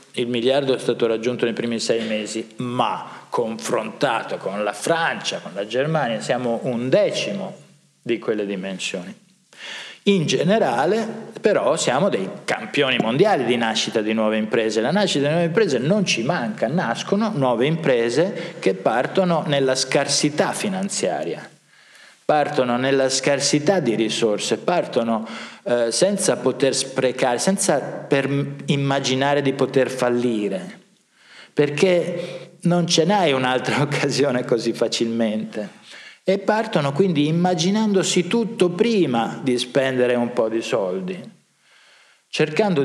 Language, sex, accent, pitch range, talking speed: Italian, male, native, 120-170 Hz, 120 wpm